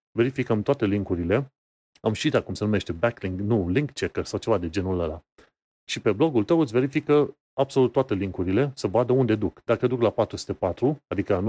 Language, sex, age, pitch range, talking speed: Romanian, male, 30-49, 100-130 Hz, 185 wpm